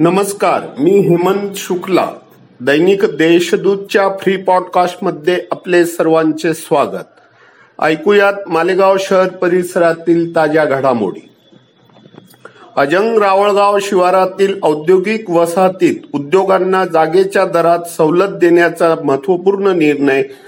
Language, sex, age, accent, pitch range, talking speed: Marathi, male, 50-69, native, 160-195 Hz, 75 wpm